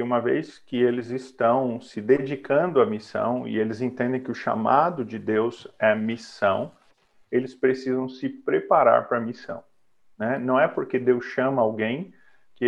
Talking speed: 155 wpm